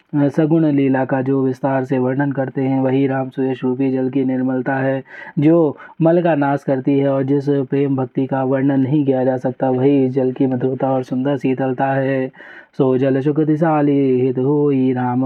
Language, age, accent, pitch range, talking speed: Hindi, 30-49, native, 130-150 Hz, 180 wpm